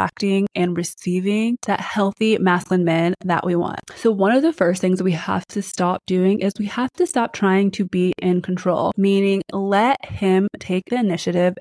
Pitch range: 180-215 Hz